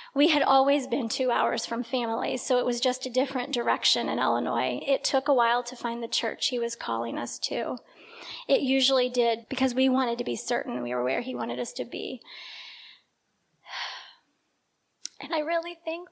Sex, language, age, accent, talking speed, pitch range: female, English, 20-39, American, 190 wpm, 270-320 Hz